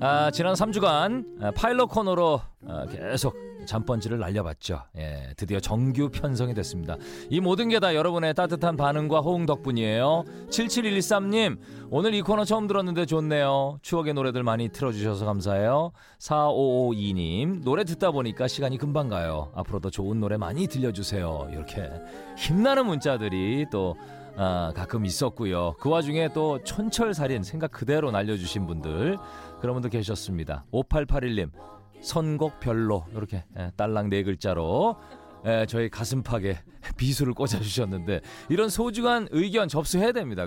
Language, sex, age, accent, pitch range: Korean, male, 40-59, native, 100-155 Hz